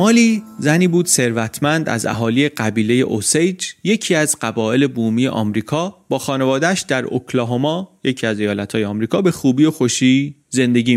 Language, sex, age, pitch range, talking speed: Persian, male, 30-49, 115-160 Hz, 140 wpm